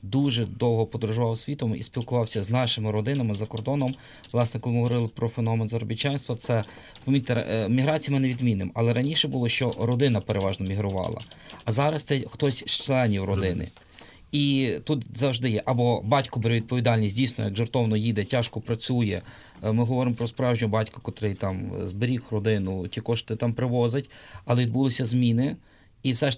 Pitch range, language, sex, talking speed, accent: 115-140 Hz, Ukrainian, male, 155 wpm, native